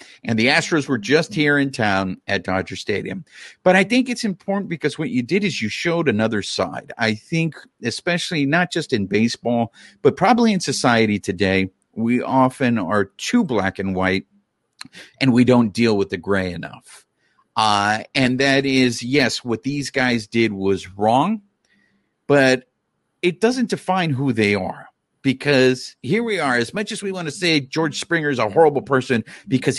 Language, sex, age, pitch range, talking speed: English, male, 50-69, 110-170 Hz, 175 wpm